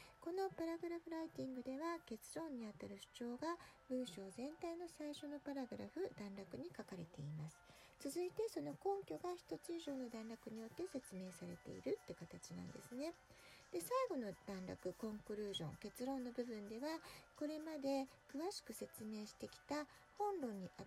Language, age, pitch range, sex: Japanese, 40-59, 190-320 Hz, female